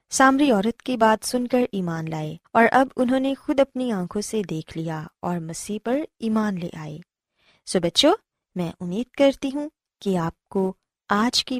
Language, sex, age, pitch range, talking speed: Urdu, female, 20-39, 170-250 Hz, 180 wpm